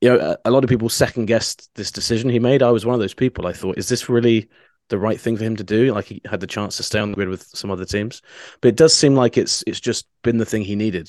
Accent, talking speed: British, 310 wpm